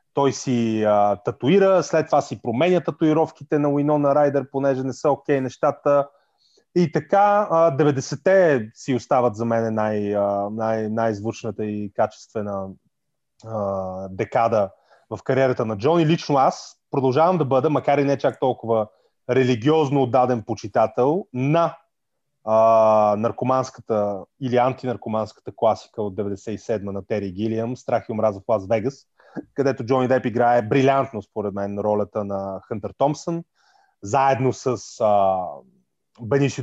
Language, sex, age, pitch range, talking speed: Bulgarian, male, 30-49, 110-145 Hz, 135 wpm